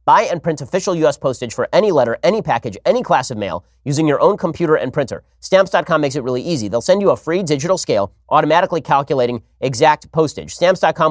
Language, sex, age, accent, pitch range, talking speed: English, male, 30-49, American, 125-170 Hz, 205 wpm